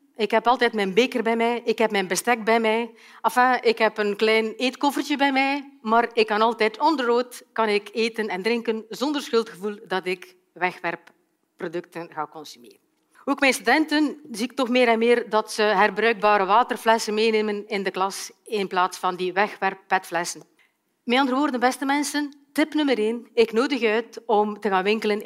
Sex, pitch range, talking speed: female, 205-255 Hz, 185 wpm